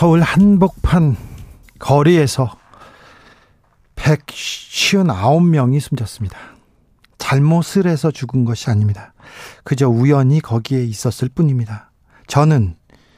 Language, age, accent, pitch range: Korean, 40-59, native, 125-160 Hz